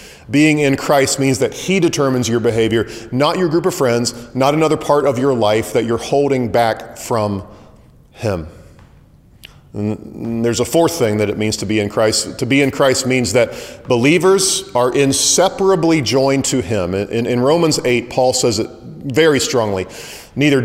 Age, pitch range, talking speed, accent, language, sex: 40-59, 115-150 Hz, 175 wpm, American, English, male